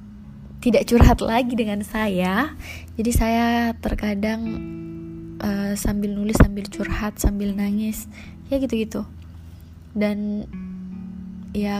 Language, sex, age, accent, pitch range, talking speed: Indonesian, female, 20-39, native, 205-220 Hz, 95 wpm